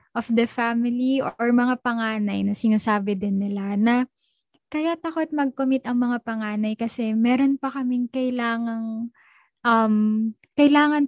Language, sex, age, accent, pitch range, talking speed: Filipino, female, 20-39, native, 205-245 Hz, 130 wpm